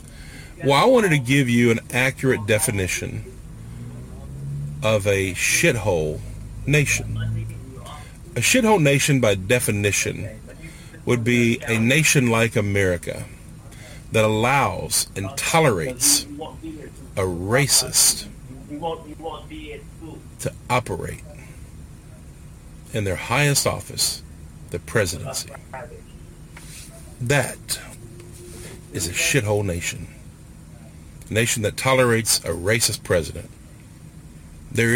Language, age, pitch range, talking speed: English, 50-69, 95-130 Hz, 85 wpm